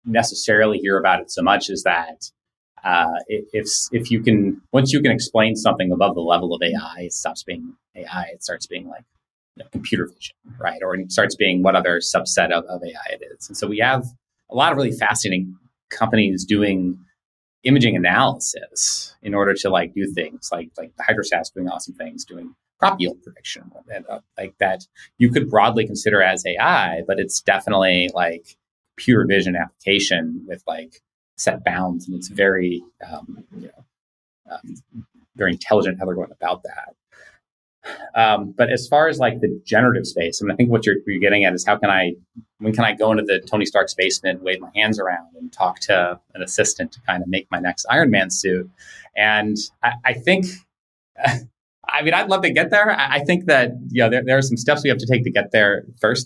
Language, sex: English, male